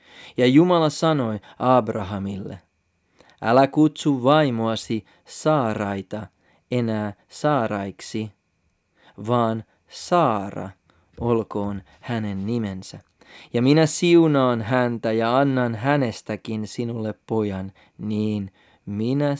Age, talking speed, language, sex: 30-49, 80 wpm, Finnish, male